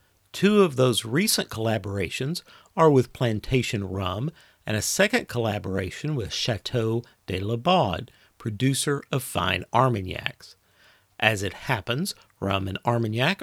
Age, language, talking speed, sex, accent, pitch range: 50-69, English, 120 wpm, male, American, 110-155 Hz